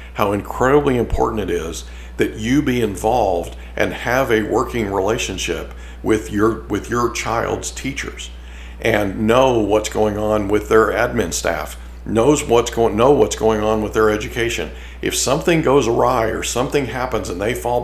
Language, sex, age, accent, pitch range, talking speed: English, male, 50-69, American, 80-115 Hz, 165 wpm